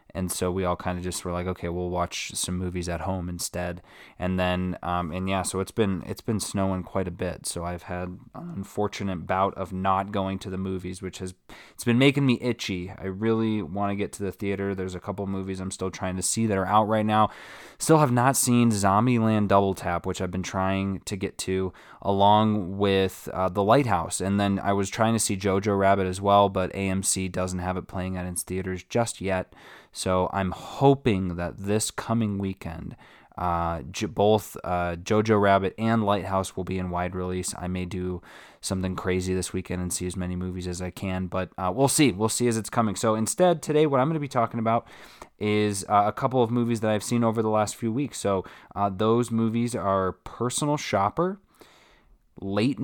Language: English